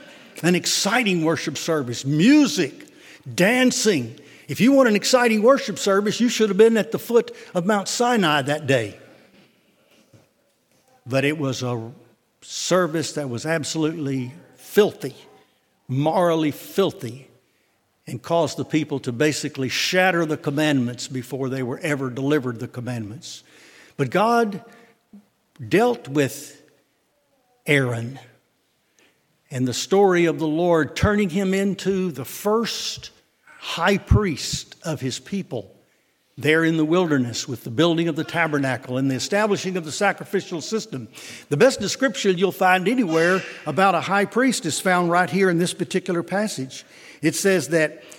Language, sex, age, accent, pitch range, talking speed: English, male, 60-79, American, 145-205 Hz, 140 wpm